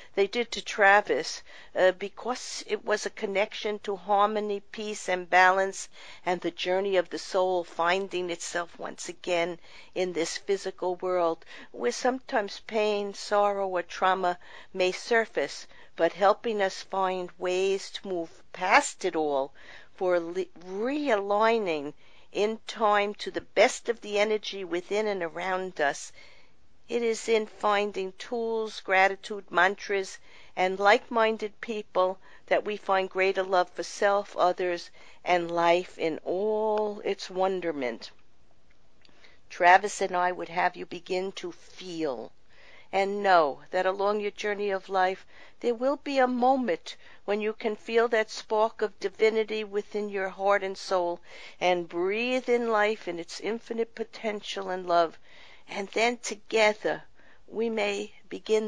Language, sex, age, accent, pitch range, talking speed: English, female, 50-69, American, 180-215 Hz, 140 wpm